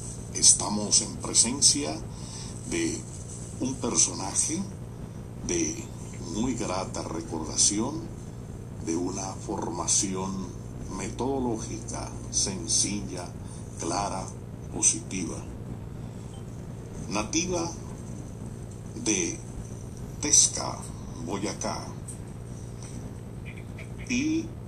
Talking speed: 55 wpm